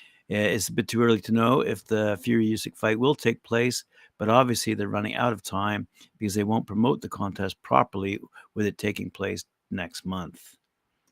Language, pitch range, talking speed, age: English, 100-115 Hz, 185 wpm, 60-79